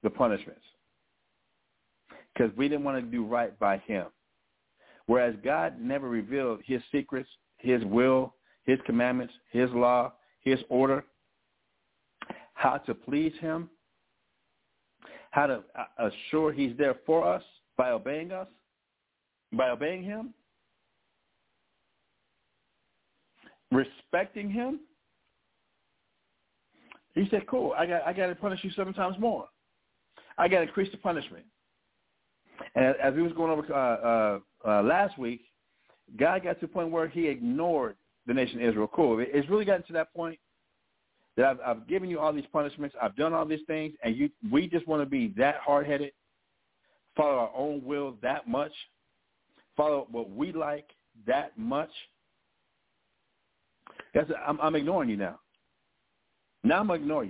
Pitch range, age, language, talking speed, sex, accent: 125-170 Hz, 60-79, English, 145 wpm, male, American